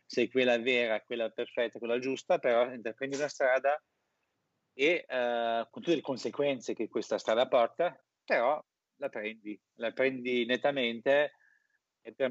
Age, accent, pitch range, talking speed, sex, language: 30-49, native, 110-135 Hz, 140 wpm, male, Italian